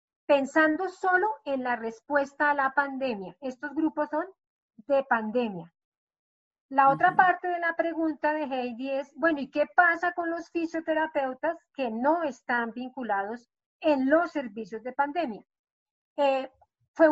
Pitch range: 255-310 Hz